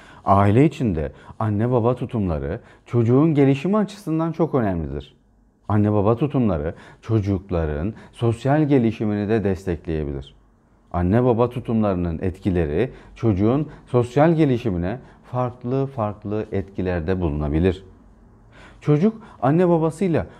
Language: Turkish